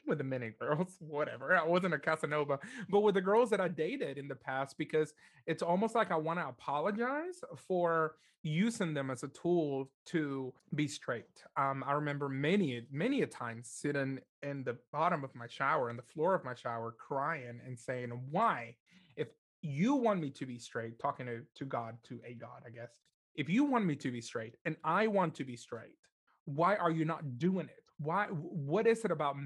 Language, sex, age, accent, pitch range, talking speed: English, male, 30-49, American, 130-170 Hz, 205 wpm